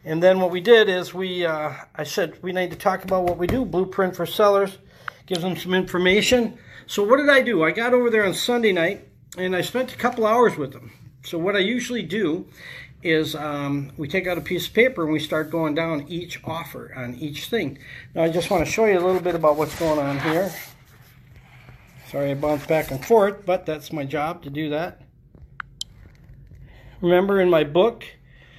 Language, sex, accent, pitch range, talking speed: English, male, American, 145-195 Hz, 210 wpm